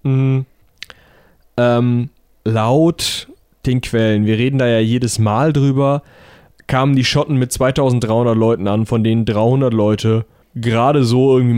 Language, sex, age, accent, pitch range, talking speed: German, male, 20-39, German, 110-130 Hz, 135 wpm